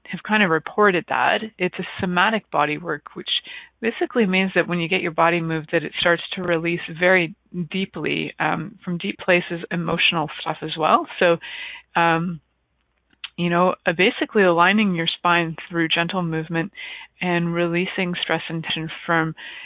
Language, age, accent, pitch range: English, 30-49, American, 165-205 Hz